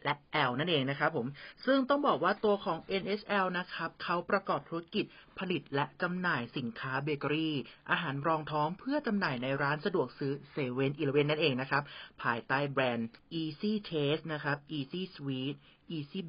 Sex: male